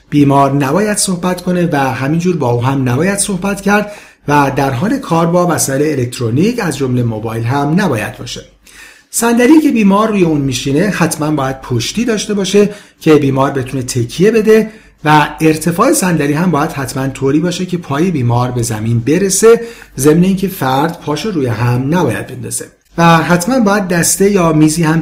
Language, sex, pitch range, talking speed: Persian, male, 140-195 Hz, 165 wpm